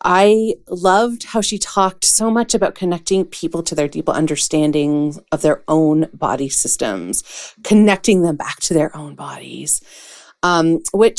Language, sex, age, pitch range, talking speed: English, female, 30-49, 155-190 Hz, 150 wpm